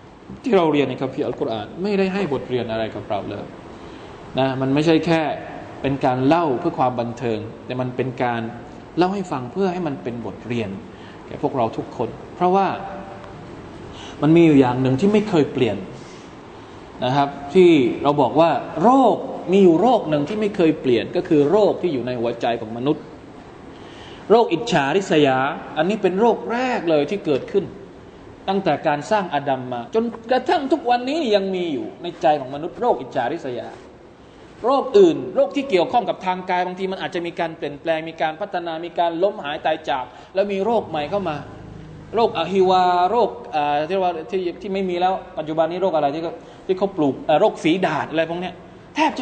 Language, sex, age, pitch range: Thai, male, 20-39, 145-200 Hz